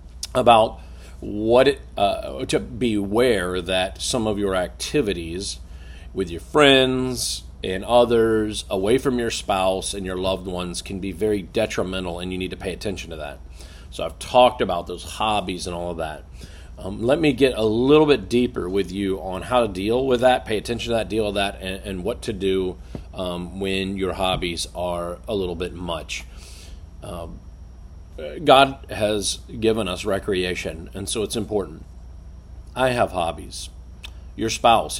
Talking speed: 170 wpm